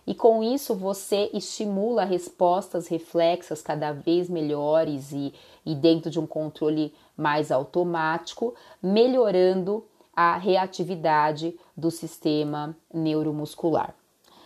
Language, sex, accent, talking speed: Portuguese, female, Brazilian, 100 wpm